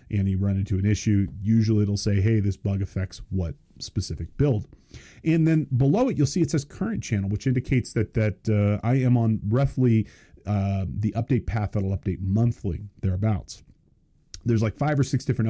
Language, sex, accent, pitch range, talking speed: English, male, American, 95-130 Hz, 195 wpm